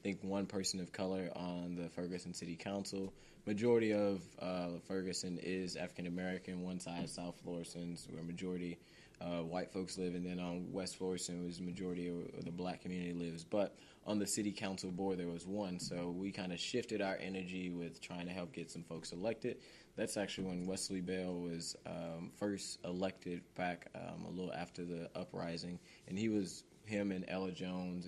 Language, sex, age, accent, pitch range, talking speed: English, male, 20-39, American, 85-95 Hz, 185 wpm